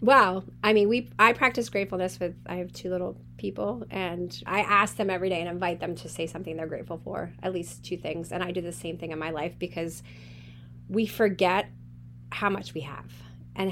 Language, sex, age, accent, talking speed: English, female, 30-49, American, 215 wpm